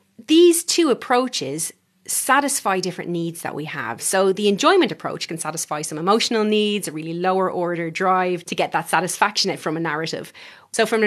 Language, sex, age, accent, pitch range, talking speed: English, female, 30-49, Irish, 155-200 Hz, 180 wpm